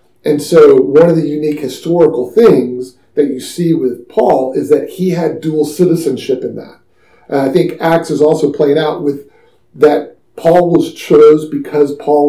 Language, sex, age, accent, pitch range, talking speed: English, male, 40-59, American, 145-175 Hz, 175 wpm